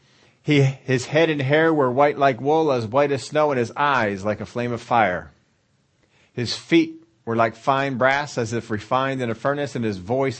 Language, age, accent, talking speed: English, 40-59, American, 210 wpm